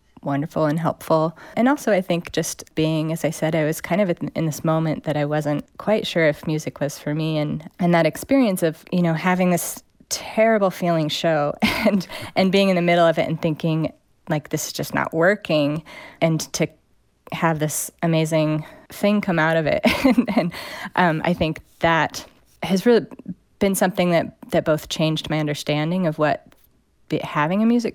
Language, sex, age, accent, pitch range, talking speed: English, female, 30-49, American, 155-190 Hz, 190 wpm